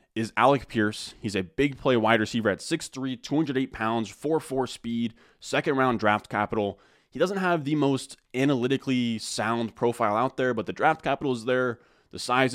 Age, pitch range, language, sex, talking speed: 20-39, 105-130 Hz, English, male, 175 wpm